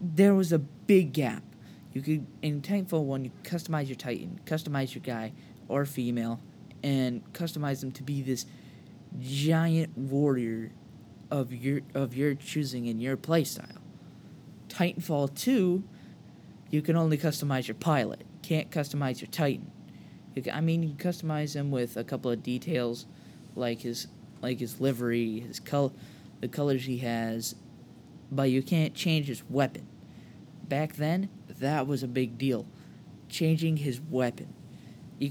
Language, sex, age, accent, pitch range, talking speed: English, male, 20-39, American, 120-160 Hz, 150 wpm